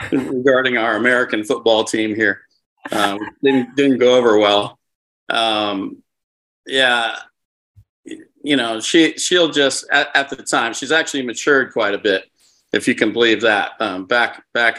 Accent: American